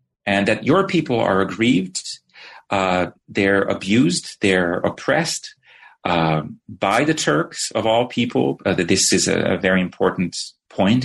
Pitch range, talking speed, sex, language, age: 95-130 Hz, 140 wpm, male, English, 40-59